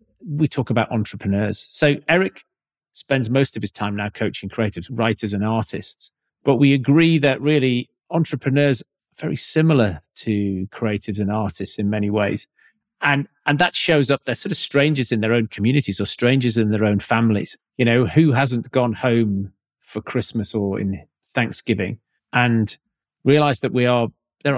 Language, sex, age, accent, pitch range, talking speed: English, male, 40-59, British, 105-140 Hz, 170 wpm